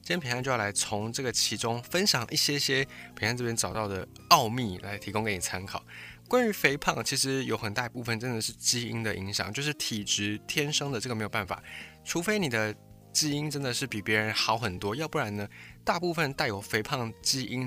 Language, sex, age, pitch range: Chinese, male, 20-39, 105-140 Hz